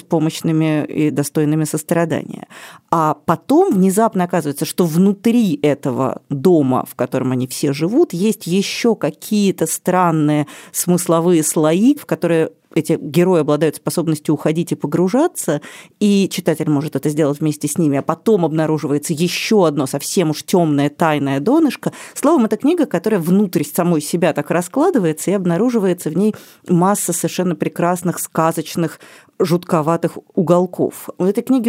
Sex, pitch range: female, 155-200 Hz